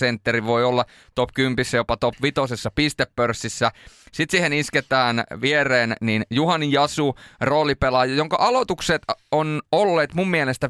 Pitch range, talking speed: 125-150 Hz, 135 wpm